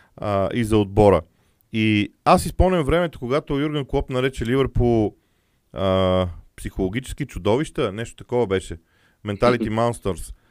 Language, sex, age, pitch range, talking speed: Bulgarian, male, 40-59, 115-150 Hz, 135 wpm